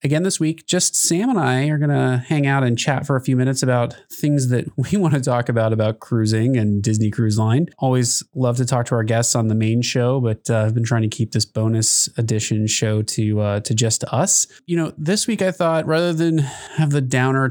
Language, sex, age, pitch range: English, male, 20-39, 110-145 Hz